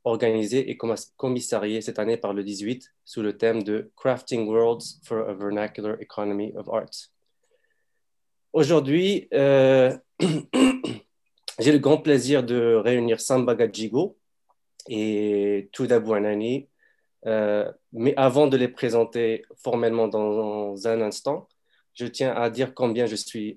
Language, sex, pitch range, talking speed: English, male, 110-135 Hz, 125 wpm